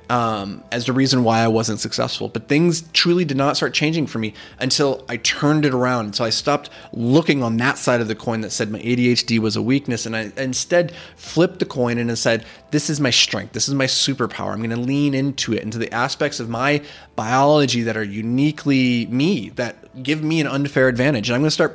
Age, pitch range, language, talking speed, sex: 20-39, 110-140 Hz, English, 225 wpm, male